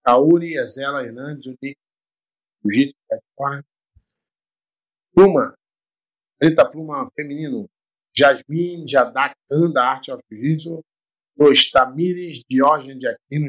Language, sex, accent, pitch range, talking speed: Portuguese, male, Brazilian, 130-160 Hz, 85 wpm